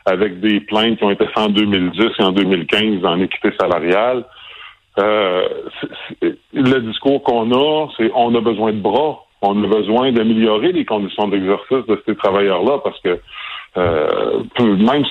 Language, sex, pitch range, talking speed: French, female, 100-125 Hz, 160 wpm